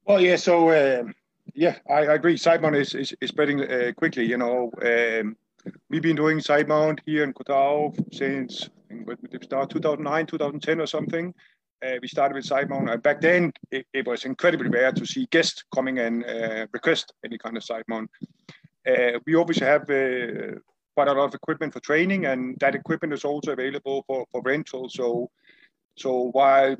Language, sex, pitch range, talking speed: English, male, 125-155 Hz, 190 wpm